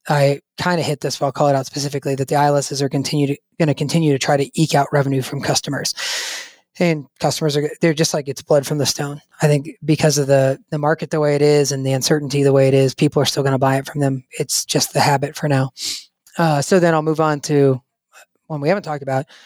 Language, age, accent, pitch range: English, 20-39, American, 140-160 Hz